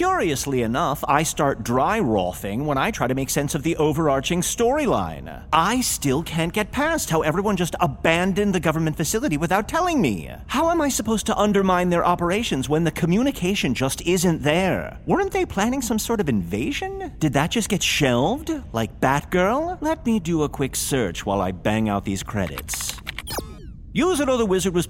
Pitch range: 120-195 Hz